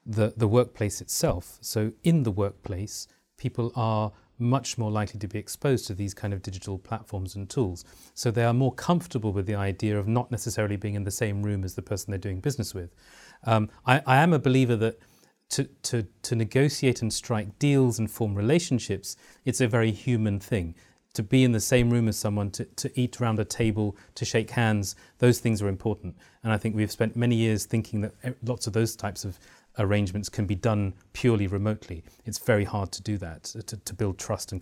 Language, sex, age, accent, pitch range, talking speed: English, male, 30-49, British, 100-120 Hz, 210 wpm